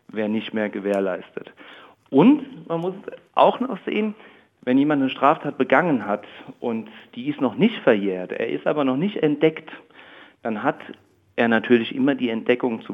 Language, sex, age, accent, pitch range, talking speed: German, male, 50-69, German, 115-155 Hz, 165 wpm